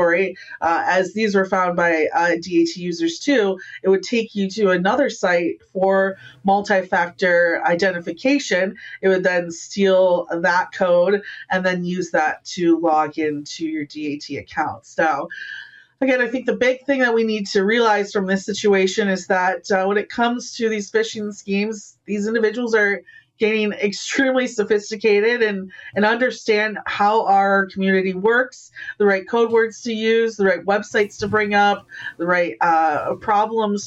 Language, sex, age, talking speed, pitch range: English, female, 30-49, 160 wpm, 185-220 Hz